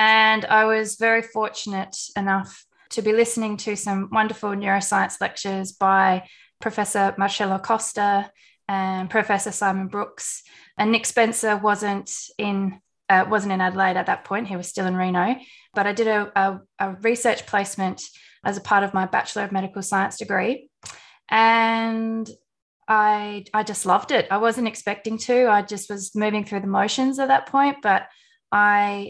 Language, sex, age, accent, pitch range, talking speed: English, female, 20-39, Australian, 195-225 Hz, 165 wpm